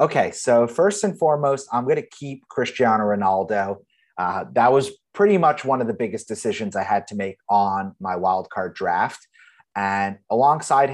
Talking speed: 170 wpm